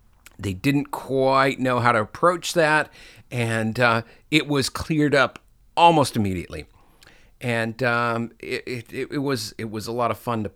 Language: English